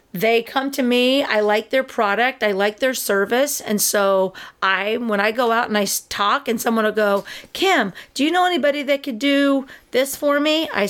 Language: English